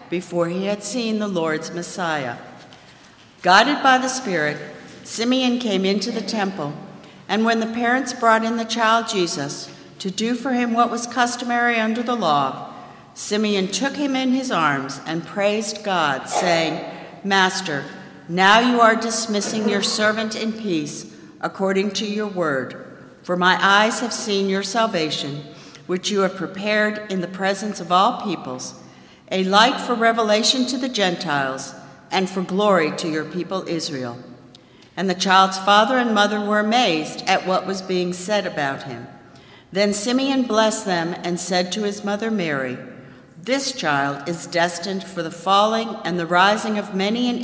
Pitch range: 170-220 Hz